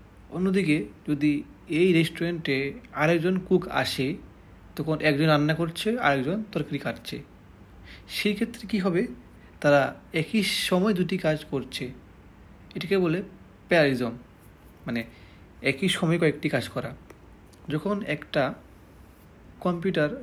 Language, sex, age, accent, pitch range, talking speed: Bengali, male, 30-49, native, 120-165 Hz, 105 wpm